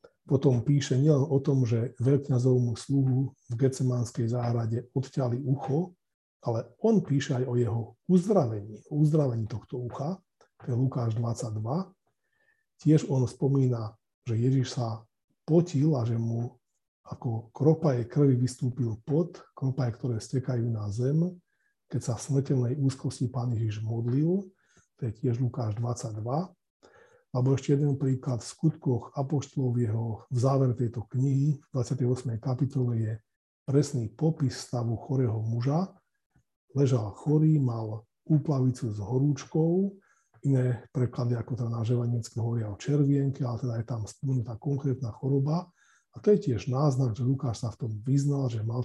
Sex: male